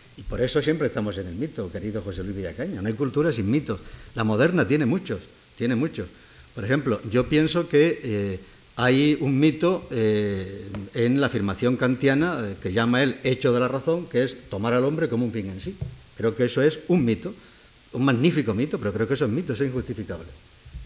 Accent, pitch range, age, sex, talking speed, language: Spanish, 105-135 Hz, 50-69, male, 210 wpm, Spanish